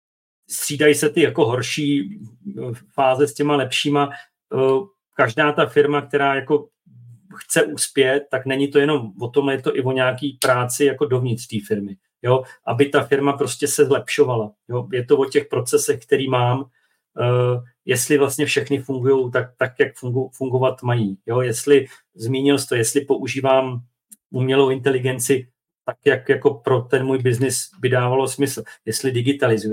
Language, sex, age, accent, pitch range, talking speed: Czech, male, 40-59, native, 130-145 Hz, 155 wpm